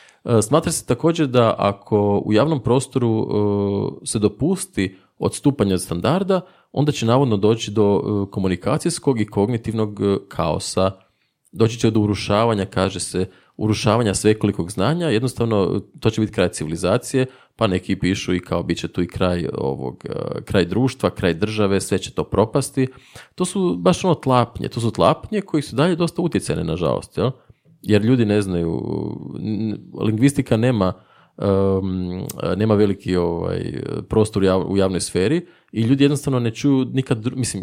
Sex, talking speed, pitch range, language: male, 145 wpm, 100-135 Hz, Croatian